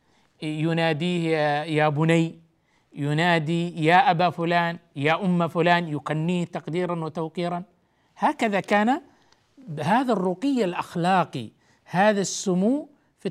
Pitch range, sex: 170-225 Hz, male